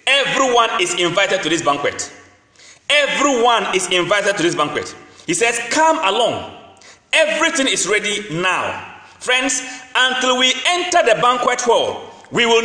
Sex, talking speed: male, 140 wpm